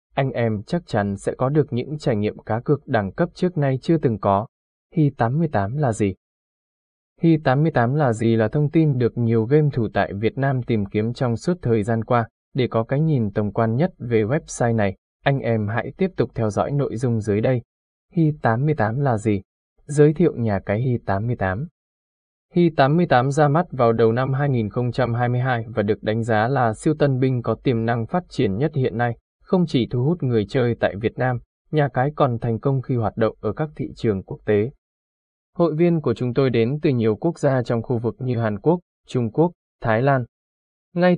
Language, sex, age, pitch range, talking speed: Vietnamese, male, 20-39, 110-145 Hz, 200 wpm